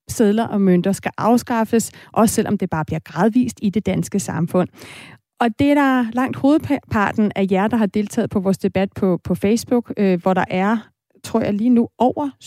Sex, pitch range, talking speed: female, 195-240 Hz, 195 wpm